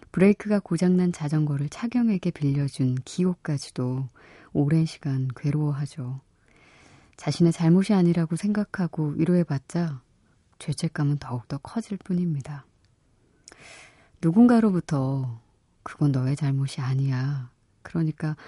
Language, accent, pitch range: Korean, native, 135-175 Hz